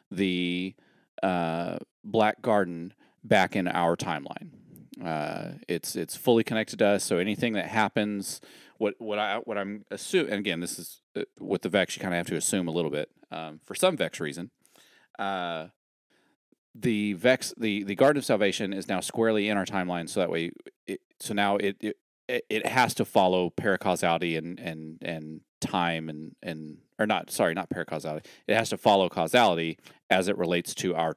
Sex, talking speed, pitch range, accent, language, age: male, 185 wpm, 85-115 Hz, American, English, 30-49